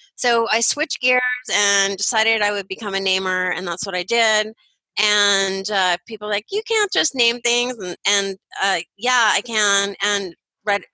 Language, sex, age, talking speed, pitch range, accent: English, female, 30-49, 180 wpm, 190-240 Hz, American